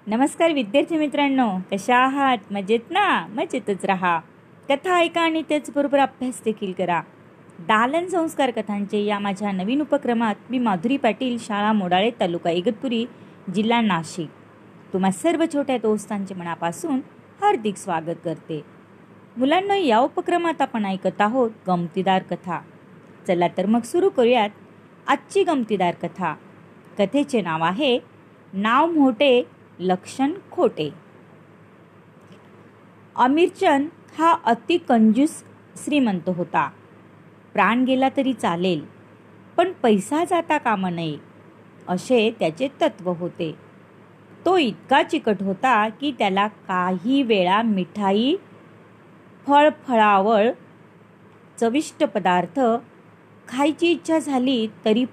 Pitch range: 185-280 Hz